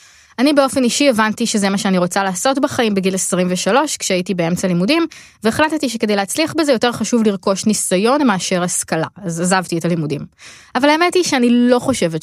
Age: 20-39